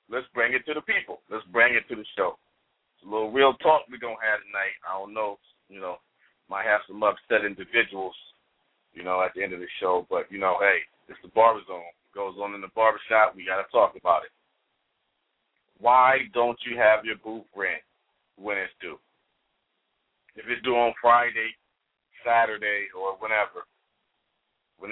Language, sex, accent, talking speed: English, male, American, 190 wpm